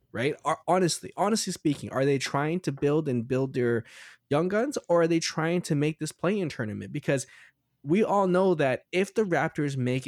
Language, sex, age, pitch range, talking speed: English, male, 20-39, 125-180 Hz, 195 wpm